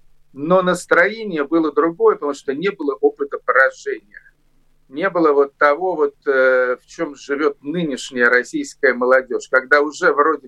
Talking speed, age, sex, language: 135 wpm, 50-69, male, Russian